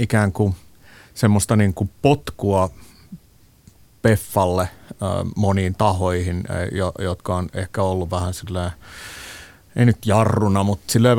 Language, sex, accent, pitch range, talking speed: Finnish, male, native, 90-100 Hz, 100 wpm